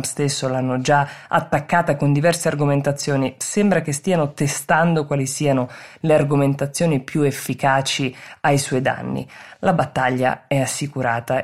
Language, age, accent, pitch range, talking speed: Italian, 20-39, native, 135-155 Hz, 125 wpm